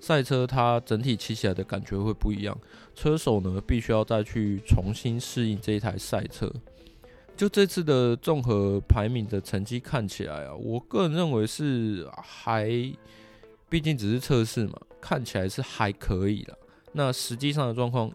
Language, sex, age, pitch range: Chinese, male, 20-39, 100-125 Hz